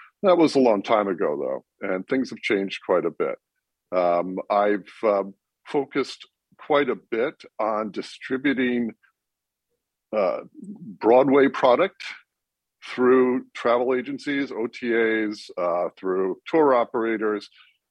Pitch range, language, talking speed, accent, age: 105-140 Hz, English, 115 wpm, American, 60-79